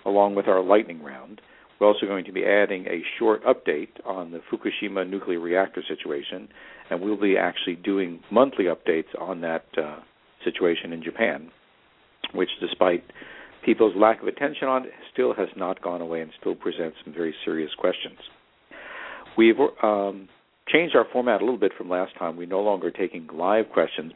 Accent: American